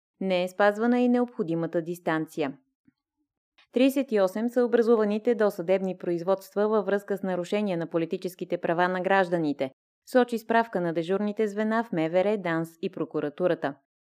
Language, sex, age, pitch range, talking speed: Bulgarian, female, 20-39, 170-225 Hz, 130 wpm